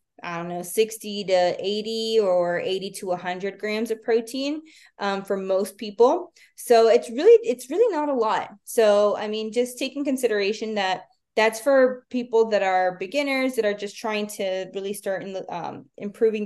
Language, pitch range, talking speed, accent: English, 185-235 Hz, 180 wpm, American